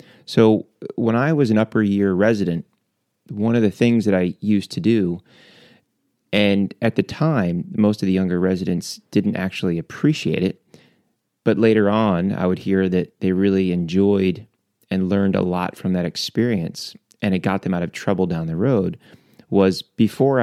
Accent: American